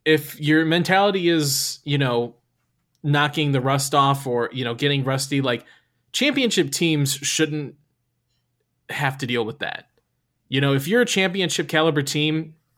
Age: 20-39